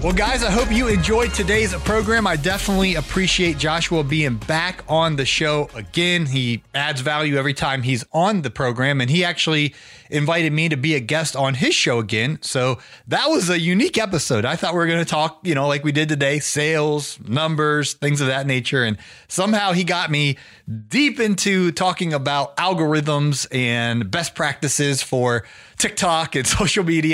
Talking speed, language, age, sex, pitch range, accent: 185 wpm, English, 30-49, male, 120-165 Hz, American